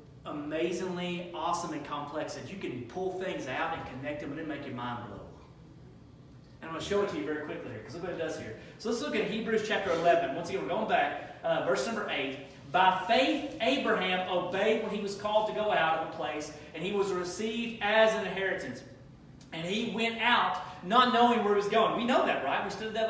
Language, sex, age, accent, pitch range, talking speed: English, male, 30-49, American, 175-230 Hz, 235 wpm